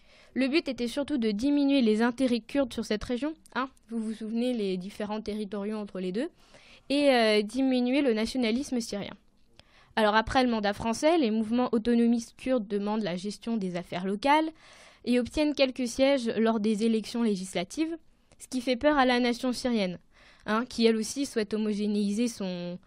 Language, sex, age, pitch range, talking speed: French, female, 20-39, 220-270 Hz, 175 wpm